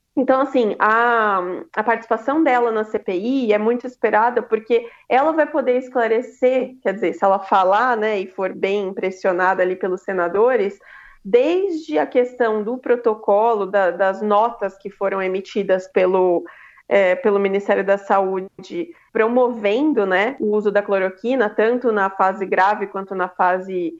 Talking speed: 145 wpm